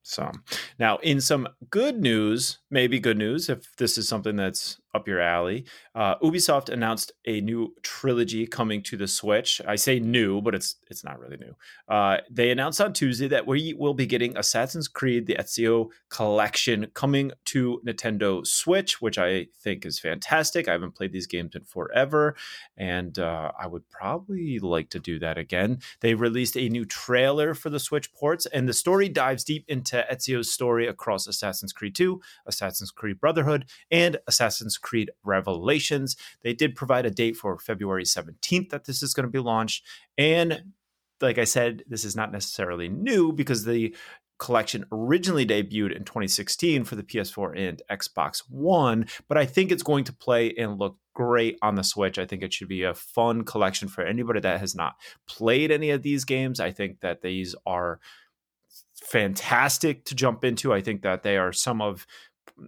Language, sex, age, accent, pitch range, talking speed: English, male, 30-49, American, 105-140 Hz, 180 wpm